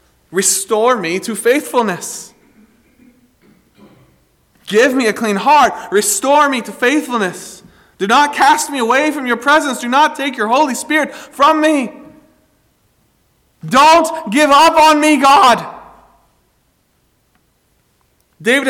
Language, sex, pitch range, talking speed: English, male, 225-280 Hz, 115 wpm